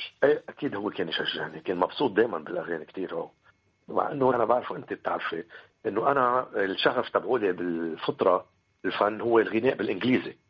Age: 50-69